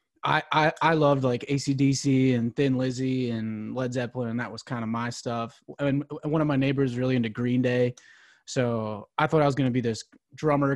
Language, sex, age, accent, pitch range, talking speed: English, male, 20-39, American, 120-140 Hz, 220 wpm